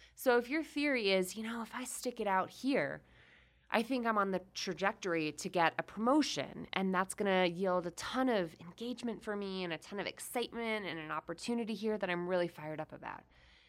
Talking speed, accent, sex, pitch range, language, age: 215 wpm, American, female, 175-240 Hz, English, 20-39